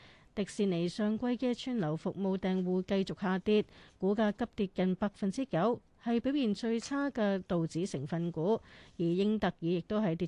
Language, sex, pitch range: Chinese, female, 170-215 Hz